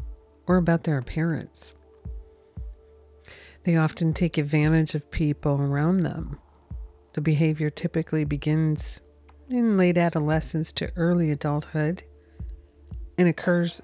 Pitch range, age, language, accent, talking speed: 145-170 Hz, 50-69, English, American, 100 wpm